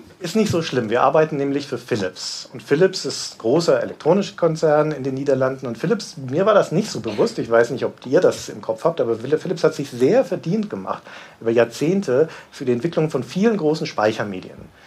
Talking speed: 205 wpm